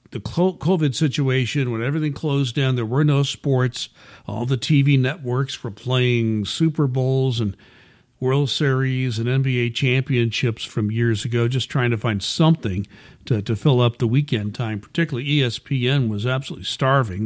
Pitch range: 120-145 Hz